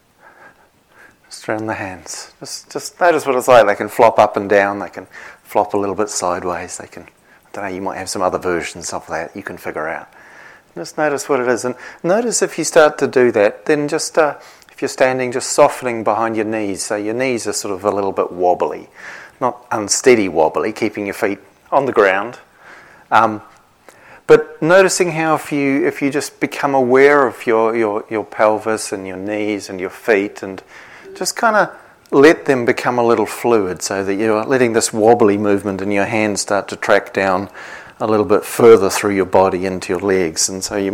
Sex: male